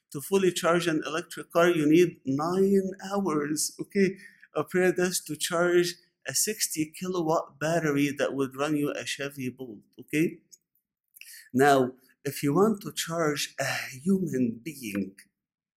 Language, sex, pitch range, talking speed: English, male, 150-205 Hz, 140 wpm